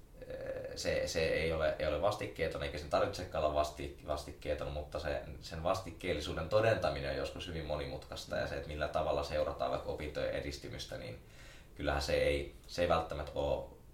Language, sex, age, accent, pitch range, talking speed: Finnish, male, 20-39, native, 75-95 Hz, 170 wpm